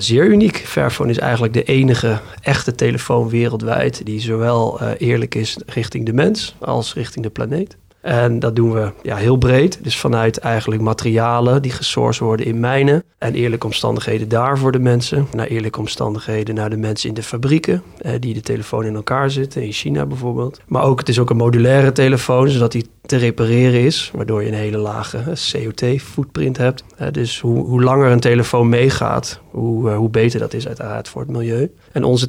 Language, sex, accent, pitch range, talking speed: Dutch, male, Dutch, 110-125 Hz, 190 wpm